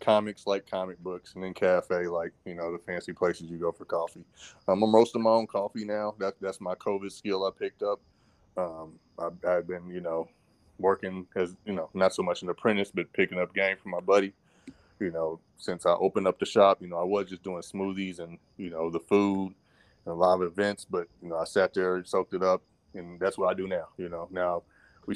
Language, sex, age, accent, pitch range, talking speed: English, male, 20-39, American, 85-95 Hz, 235 wpm